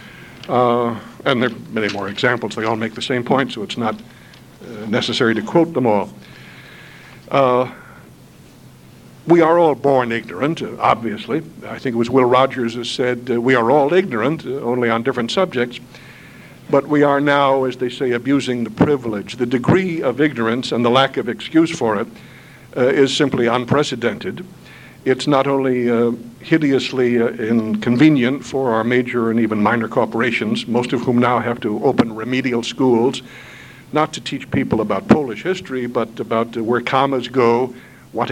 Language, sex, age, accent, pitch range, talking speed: English, male, 60-79, American, 115-135 Hz, 170 wpm